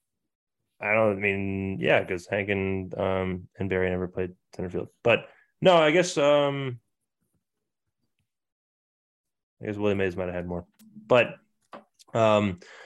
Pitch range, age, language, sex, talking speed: 95-130 Hz, 20-39, English, male, 135 wpm